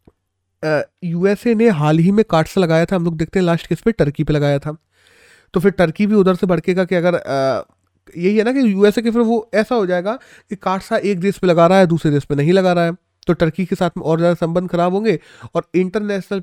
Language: Hindi